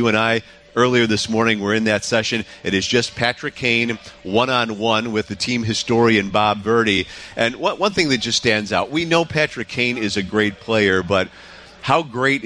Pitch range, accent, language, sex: 105-125 Hz, American, English, male